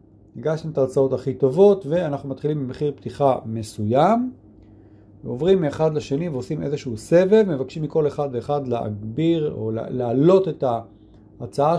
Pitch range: 105-155 Hz